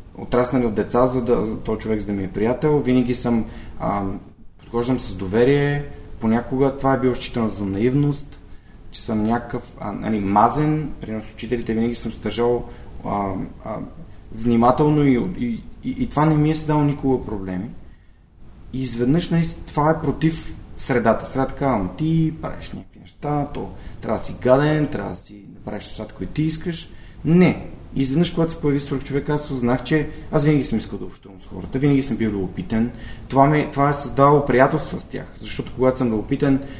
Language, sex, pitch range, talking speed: Bulgarian, male, 110-145 Hz, 180 wpm